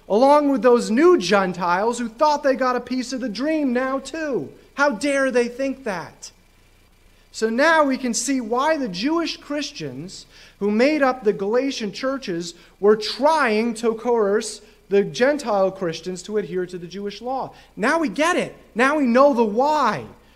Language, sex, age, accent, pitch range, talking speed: English, male, 30-49, American, 205-265 Hz, 170 wpm